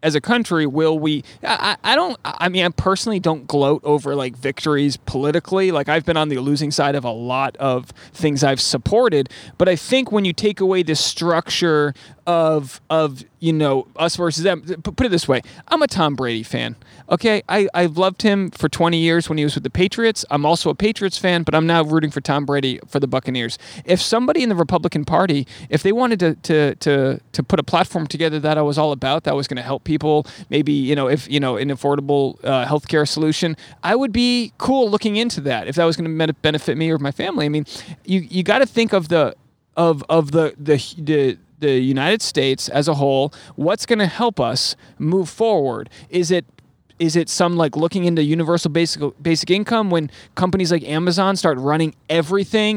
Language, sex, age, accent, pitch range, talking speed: English, male, 30-49, American, 145-195 Hz, 215 wpm